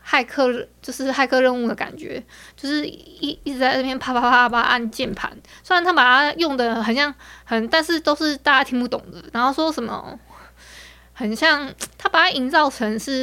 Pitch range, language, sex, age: 225-280 Hz, Chinese, female, 20-39